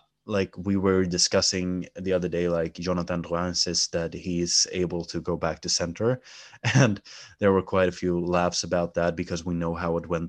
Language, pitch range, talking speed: English, 85-100 Hz, 200 wpm